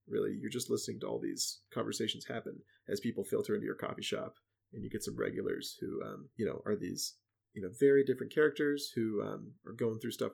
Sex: male